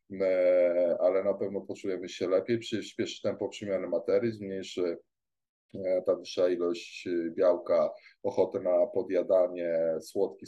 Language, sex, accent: Polish, male, native